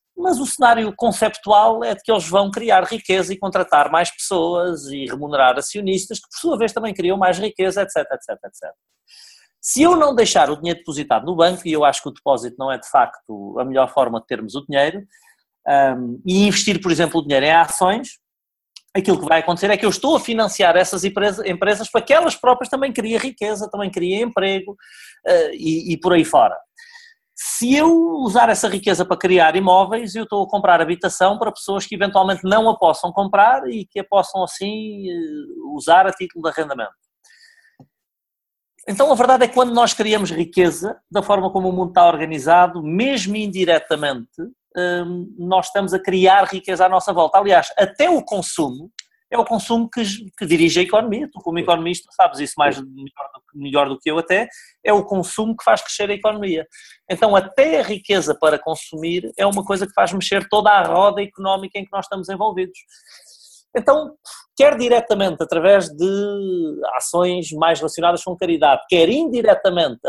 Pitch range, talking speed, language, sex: 170-225 Hz, 180 wpm, Portuguese, male